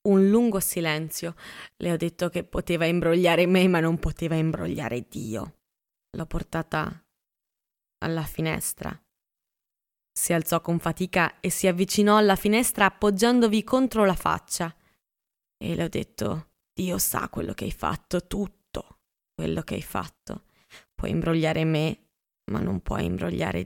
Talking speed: 135 wpm